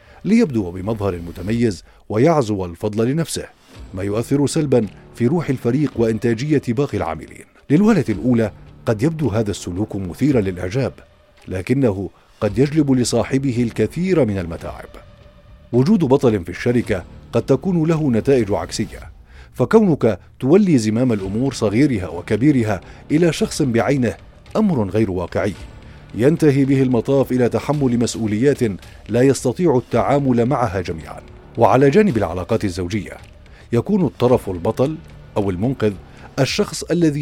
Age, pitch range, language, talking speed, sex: 50-69, 105-140 Hz, Arabic, 120 wpm, male